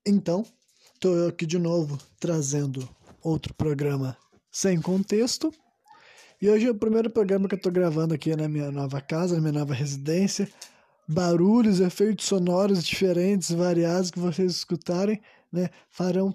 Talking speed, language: 145 wpm, Portuguese